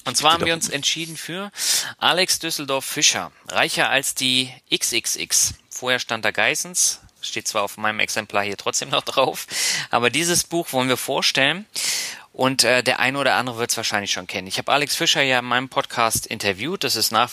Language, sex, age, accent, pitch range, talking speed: German, male, 30-49, German, 110-145 Hz, 190 wpm